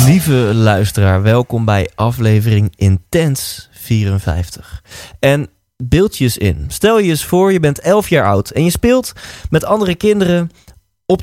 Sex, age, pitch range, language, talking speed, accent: male, 20-39, 100-145 Hz, Dutch, 150 wpm, Dutch